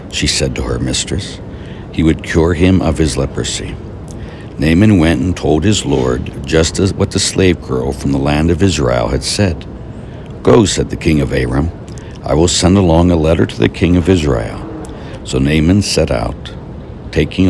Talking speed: 180 wpm